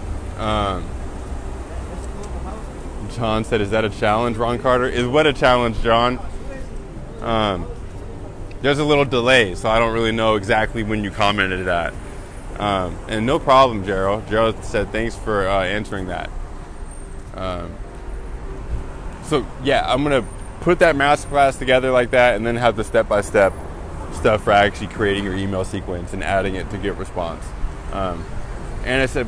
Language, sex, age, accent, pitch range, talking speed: English, male, 20-39, American, 95-130 Hz, 155 wpm